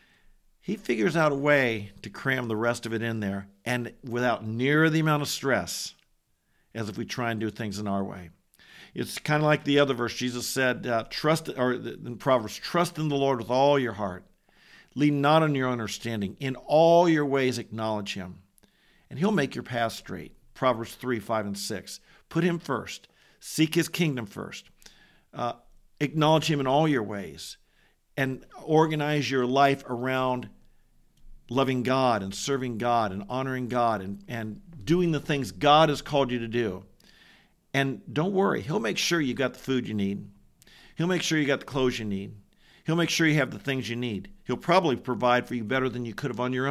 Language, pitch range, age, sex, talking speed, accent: English, 115-145 Hz, 50-69, male, 200 wpm, American